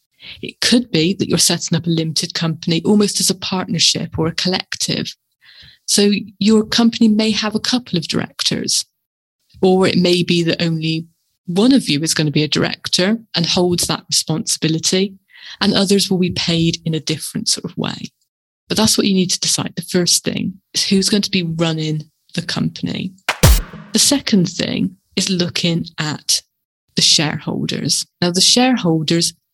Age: 30-49